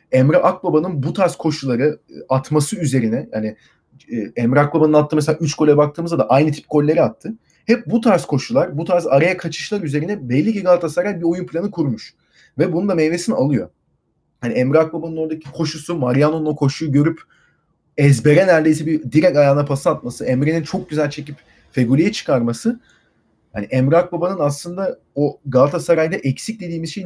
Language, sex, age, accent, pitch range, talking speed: Turkish, male, 30-49, native, 135-170 Hz, 155 wpm